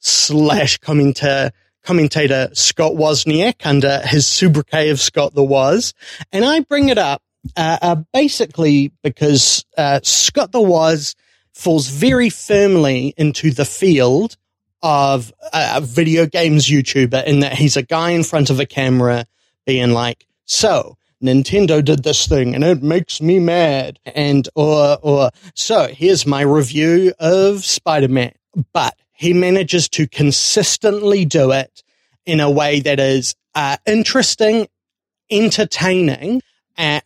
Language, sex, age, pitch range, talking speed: English, male, 30-49, 140-180 Hz, 140 wpm